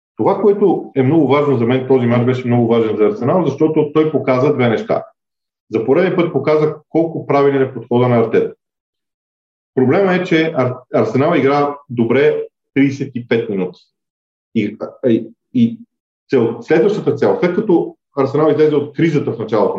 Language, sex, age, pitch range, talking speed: Bulgarian, male, 40-59, 120-145 Hz, 150 wpm